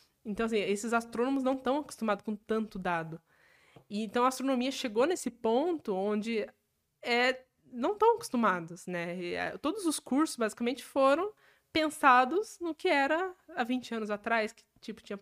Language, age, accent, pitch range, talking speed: Portuguese, 20-39, Brazilian, 200-260 Hz, 160 wpm